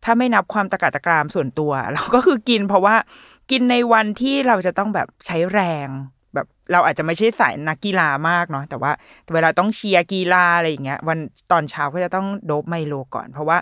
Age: 20-39